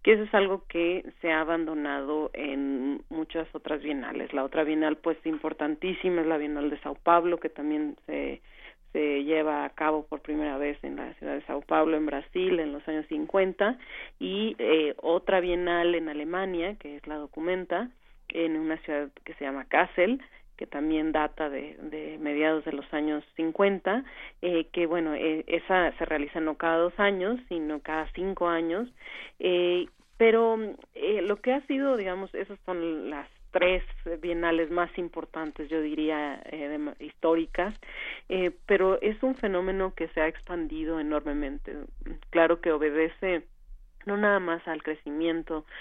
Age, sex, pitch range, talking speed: 40-59, female, 150-180 Hz, 160 wpm